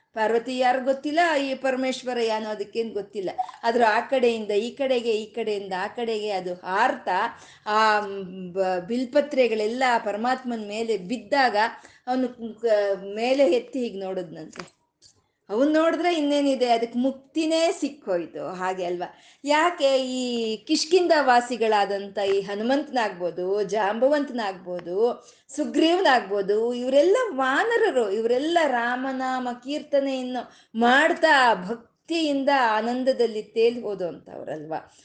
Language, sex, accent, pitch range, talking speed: Kannada, female, native, 215-280 Hz, 95 wpm